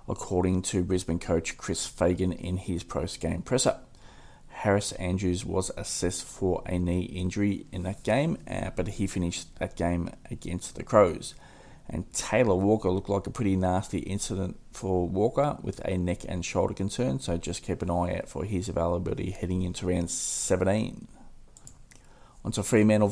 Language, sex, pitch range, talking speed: English, male, 90-105 Hz, 160 wpm